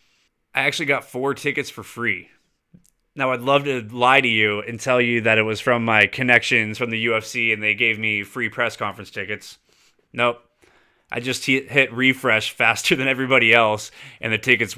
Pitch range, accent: 110-140 Hz, American